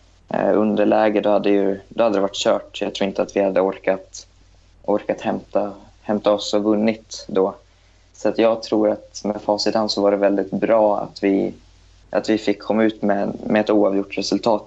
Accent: native